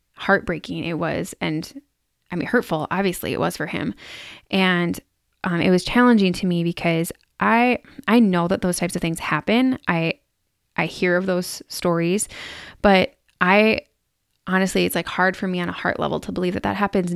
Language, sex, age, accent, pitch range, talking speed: English, female, 20-39, American, 170-195 Hz, 180 wpm